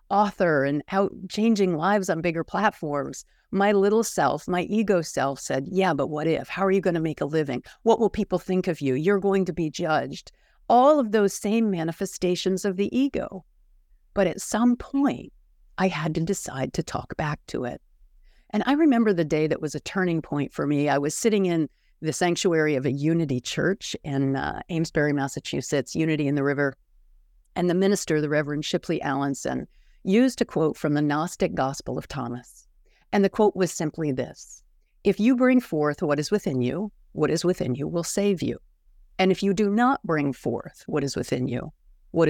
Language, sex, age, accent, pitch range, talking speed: English, female, 50-69, American, 145-195 Hz, 195 wpm